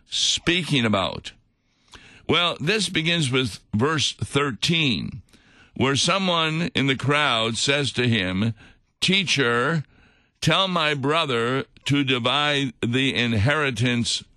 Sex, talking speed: male, 100 wpm